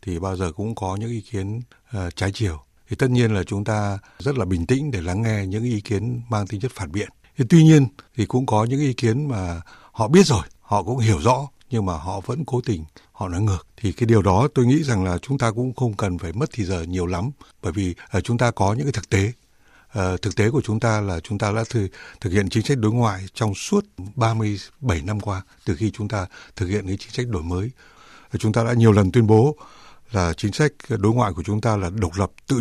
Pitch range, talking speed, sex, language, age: 95-120 Hz, 260 wpm, male, Vietnamese, 60-79